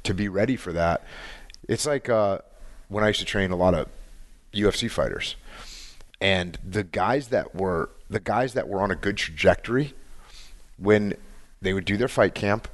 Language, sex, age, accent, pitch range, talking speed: English, male, 30-49, American, 95-115 Hz, 180 wpm